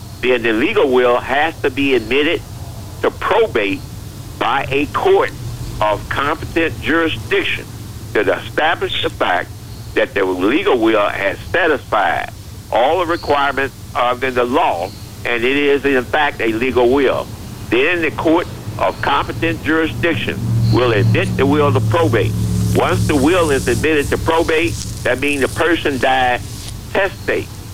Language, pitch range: English, 105-140 Hz